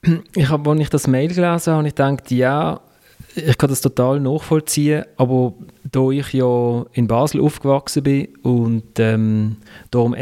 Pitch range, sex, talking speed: 120-140 Hz, male, 165 wpm